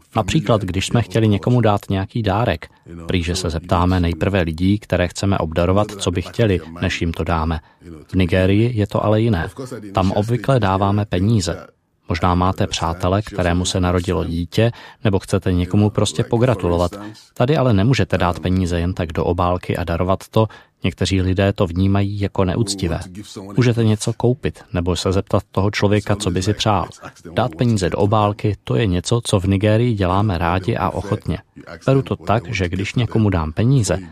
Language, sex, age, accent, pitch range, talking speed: Czech, male, 20-39, native, 90-110 Hz, 170 wpm